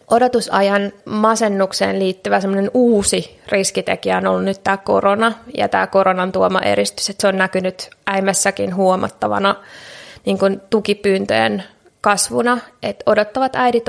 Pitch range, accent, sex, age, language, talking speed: 190-215 Hz, native, female, 20-39, Finnish, 115 wpm